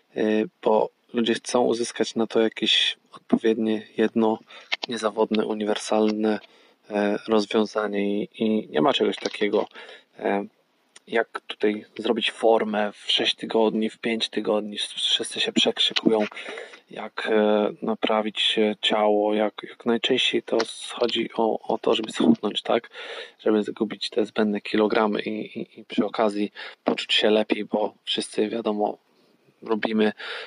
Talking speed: 120 wpm